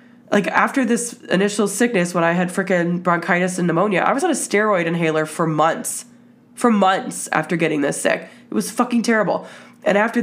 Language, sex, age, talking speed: English, female, 20-39, 190 wpm